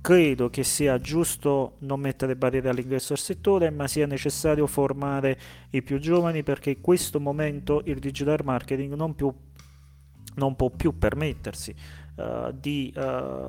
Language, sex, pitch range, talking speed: Italian, male, 120-140 Hz, 135 wpm